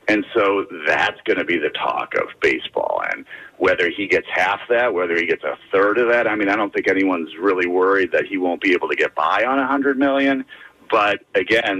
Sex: male